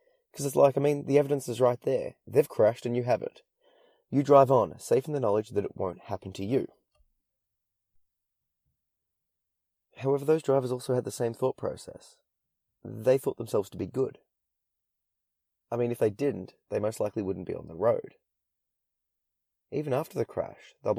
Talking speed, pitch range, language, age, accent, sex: 175 wpm, 100-145 Hz, English, 20-39, Australian, male